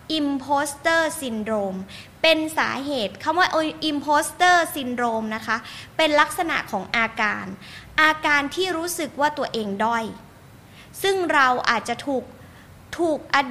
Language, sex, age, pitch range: Thai, female, 20-39, 240-320 Hz